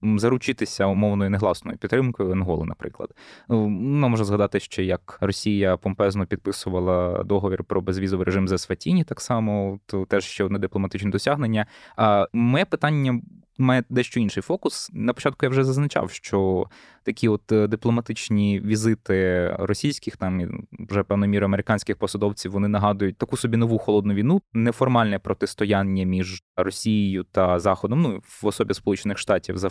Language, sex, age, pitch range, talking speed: Ukrainian, male, 20-39, 95-115 Hz, 140 wpm